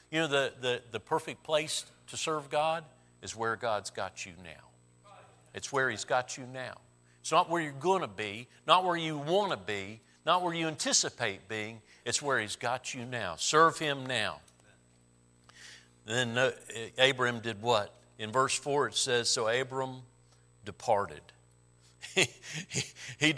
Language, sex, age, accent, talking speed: English, male, 50-69, American, 165 wpm